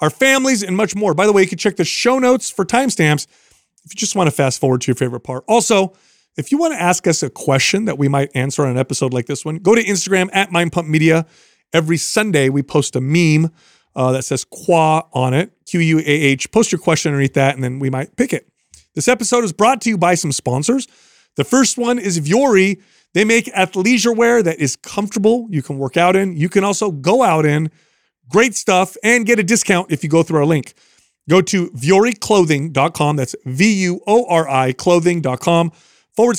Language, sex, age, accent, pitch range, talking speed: English, male, 30-49, American, 150-210 Hz, 210 wpm